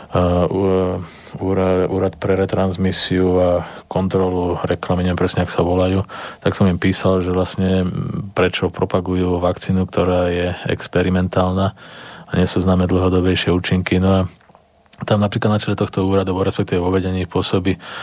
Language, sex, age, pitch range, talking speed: Slovak, male, 20-39, 90-95 Hz, 135 wpm